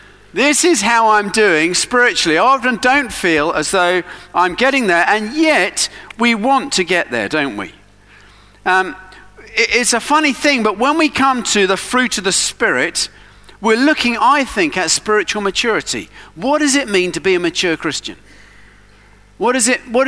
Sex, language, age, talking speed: male, English, 40-59, 170 wpm